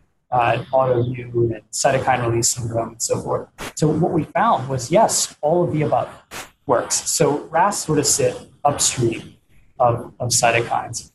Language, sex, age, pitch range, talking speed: English, male, 30-49, 115-145 Hz, 155 wpm